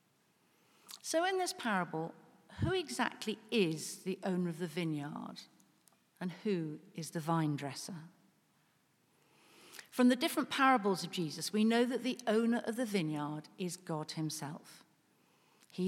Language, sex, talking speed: English, female, 135 wpm